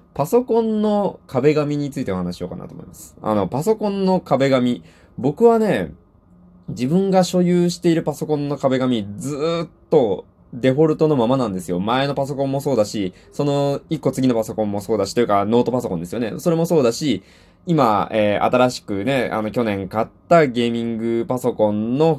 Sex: male